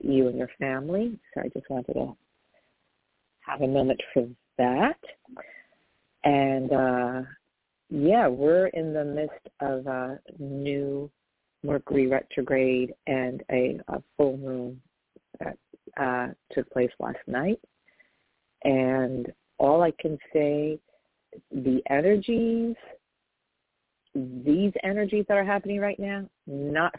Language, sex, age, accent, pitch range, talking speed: English, female, 50-69, American, 130-165 Hz, 115 wpm